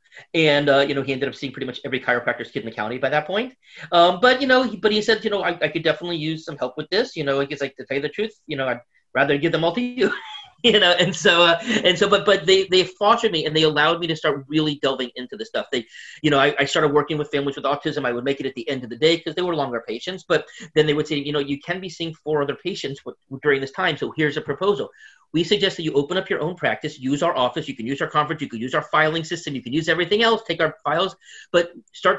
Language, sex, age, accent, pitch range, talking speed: English, male, 30-49, American, 140-180 Hz, 300 wpm